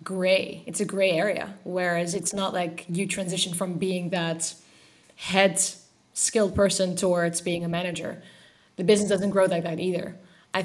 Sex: female